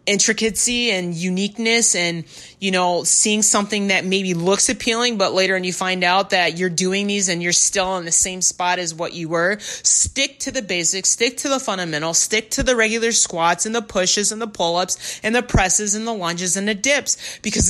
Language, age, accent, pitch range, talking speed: English, 30-49, American, 170-210 Hz, 215 wpm